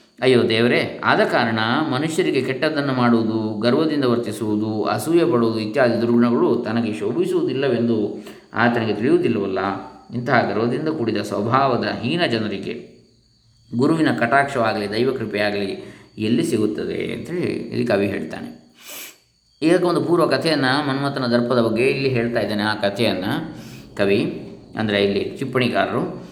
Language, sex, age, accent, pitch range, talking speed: Kannada, male, 20-39, native, 115-140 Hz, 110 wpm